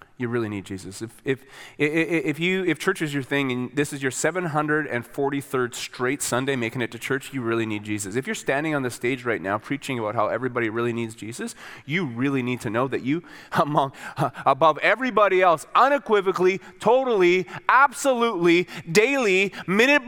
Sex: male